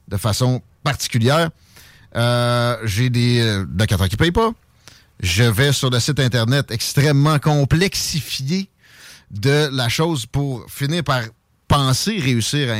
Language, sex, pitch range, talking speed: French, male, 115-155 Hz, 130 wpm